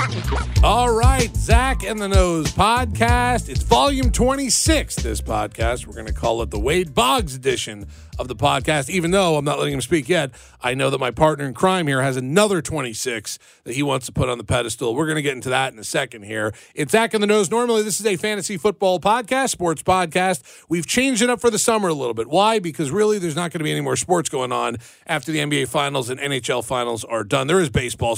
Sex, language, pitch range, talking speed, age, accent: male, English, 130-190 Hz, 240 wpm, 40-59, American